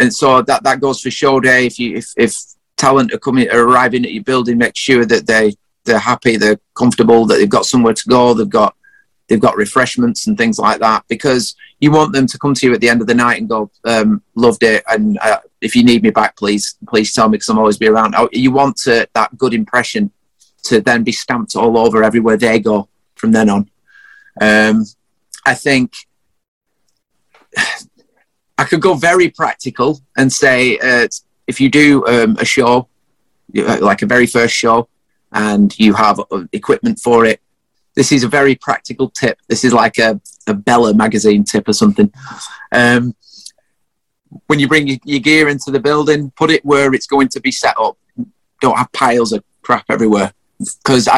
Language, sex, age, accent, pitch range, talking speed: English, male, 30-49, British, 115-145 Hz, 195 wpm